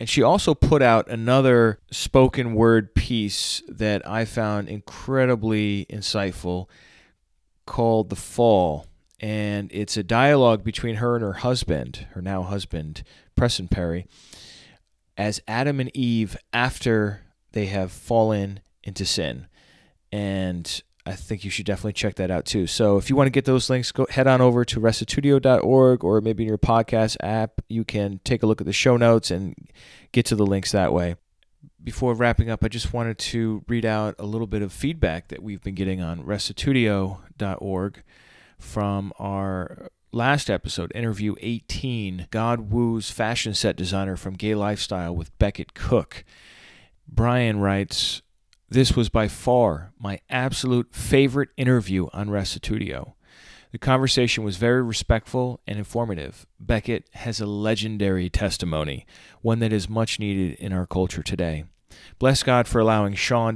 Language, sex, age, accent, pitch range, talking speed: English, male, 30-49, American, 95-115 Hz, 155 wpm